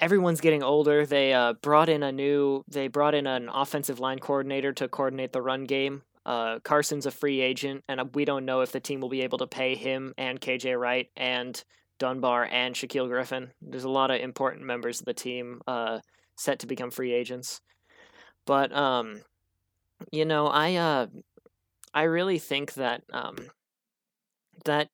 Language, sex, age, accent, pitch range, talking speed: English, male, 20-39, American, 125-145 Hz, 180 wpm